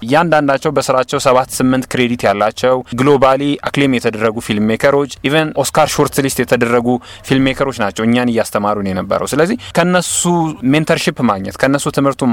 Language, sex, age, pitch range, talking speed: Amharic, male, 20-39, 120-150 Hz, 130 wpm